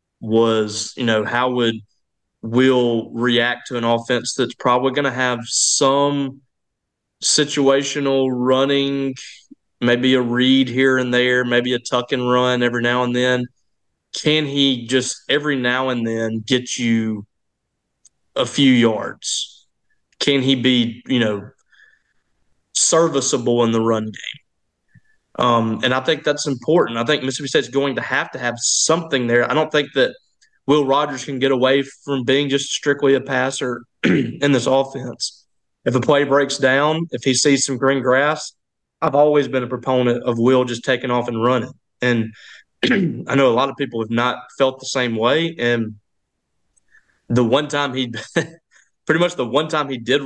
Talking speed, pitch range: 165 wpm, 120-140 Hz